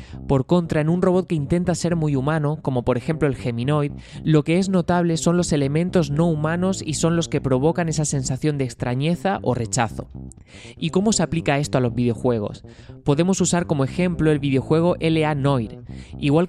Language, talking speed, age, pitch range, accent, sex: Spanish, 190 wpm, 20-39, 125-165 Hz, Spanish, male